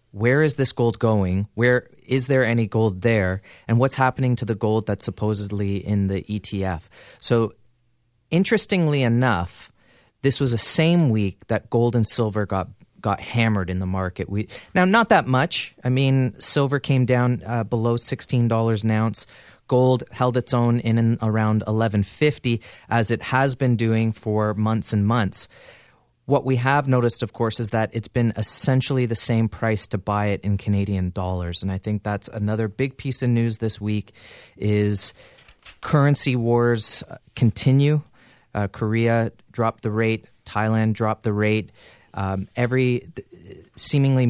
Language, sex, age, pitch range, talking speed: English, male, 30-49, 105-125 Hz, 165 wpm